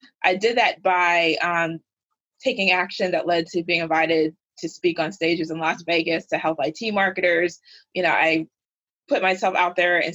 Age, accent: 20-39, American